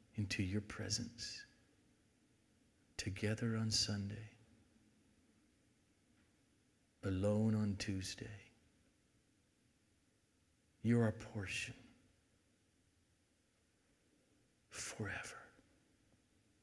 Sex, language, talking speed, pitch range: male, English, 45 wpm, 95-115 Hz